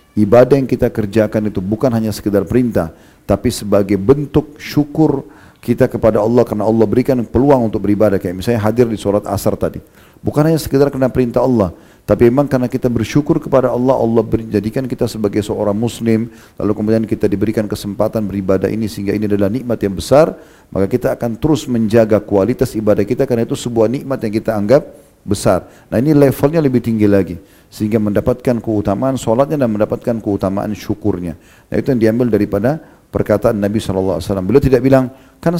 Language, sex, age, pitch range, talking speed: Indonesian, male, 40-59, 105-130 Hz, 175 wpm